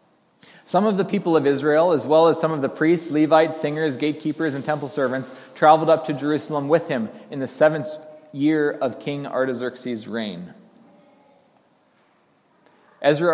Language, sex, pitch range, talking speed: English, male, 120-155 Hz, 155 wpm